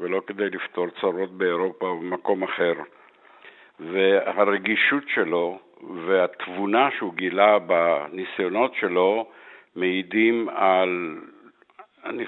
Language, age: Hebrew, 60-79